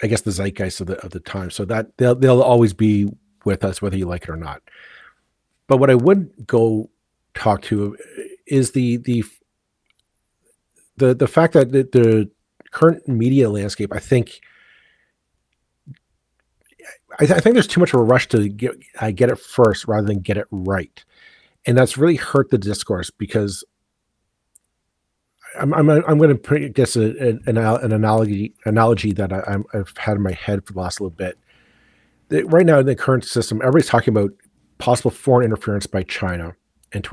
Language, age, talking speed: English, 40-59, 180 wpm